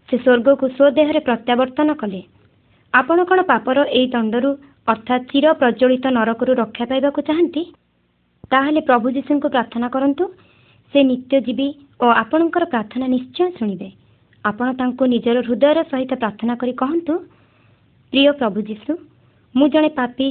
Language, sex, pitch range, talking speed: Hindi, male, 230-290 Hz, 130 wpm